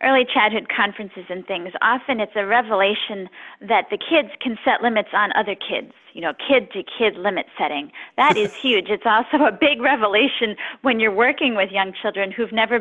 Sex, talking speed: female, 185 wpm